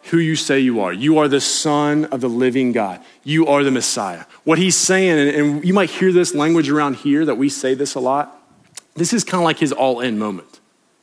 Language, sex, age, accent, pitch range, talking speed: English, male, 30-49, American, 125-165 Hz, 235 wpm